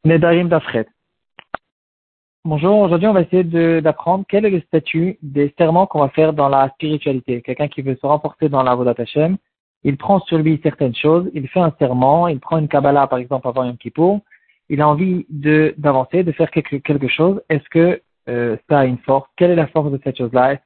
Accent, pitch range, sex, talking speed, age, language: French, 135-170 Hz, male, 210 wpm, 40-59, French